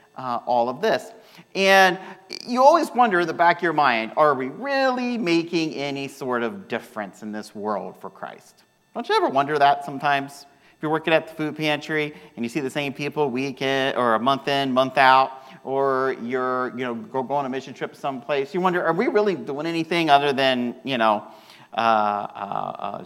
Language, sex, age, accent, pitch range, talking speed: English, male, 40-59, American, 125-165 Hz, 205 wpm